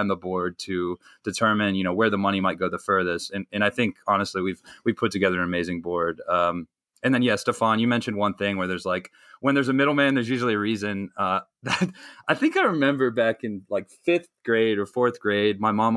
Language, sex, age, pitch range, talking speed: English, male, 20-39, 95-115 Hz, 230 wpm